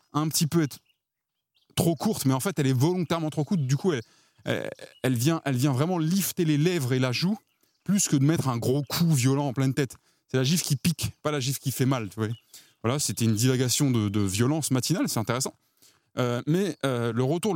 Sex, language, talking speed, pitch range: male, French, 230 wpm, 120-160 Hz